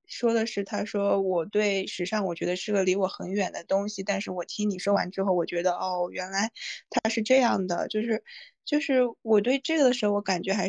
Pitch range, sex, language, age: 180-210 Hz, female, Chinese, 20-39